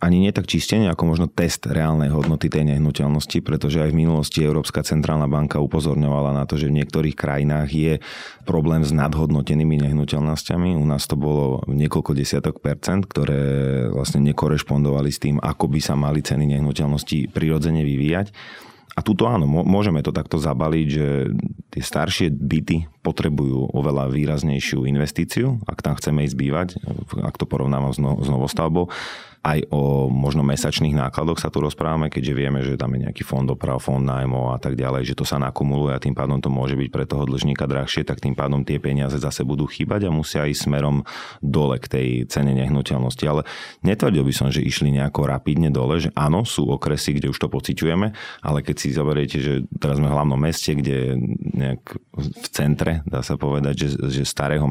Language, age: Slovak, 30-49